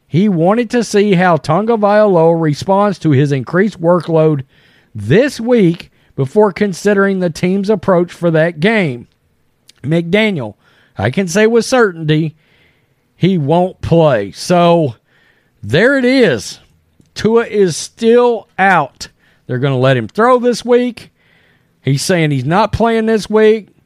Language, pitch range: English, 155-215 Hz